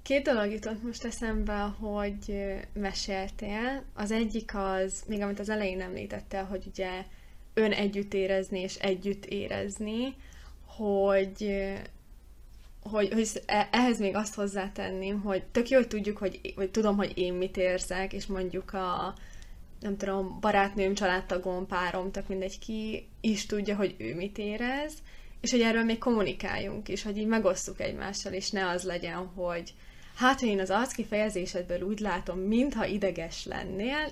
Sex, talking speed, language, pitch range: female, 150 wpm, Hungarian, 185-215 Hz